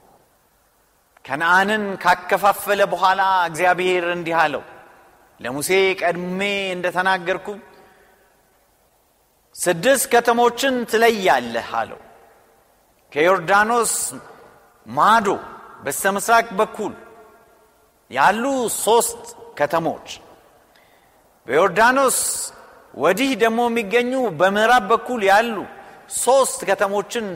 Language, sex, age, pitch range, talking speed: Amharic, male, 50-69, 185-240 Hz, 65 wpm